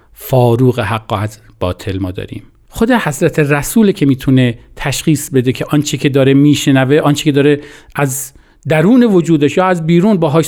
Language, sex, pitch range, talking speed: Persian, male, 130-190 Hz, 160 wpm